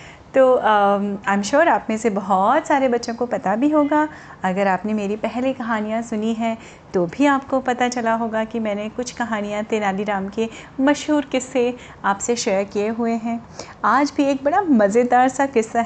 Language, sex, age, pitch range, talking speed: Hindi, female, 30-49, 210-275 Hz, 180 wpm